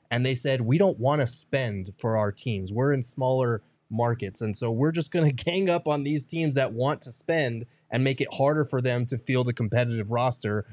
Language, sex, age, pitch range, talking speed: English, male, 20-39, 115-140 Hz, 230 wpm